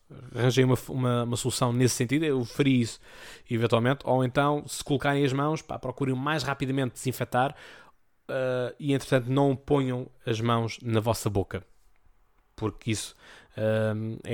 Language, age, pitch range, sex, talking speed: Portuguese, 20-39, 110-130 Hz, male, 145 wpm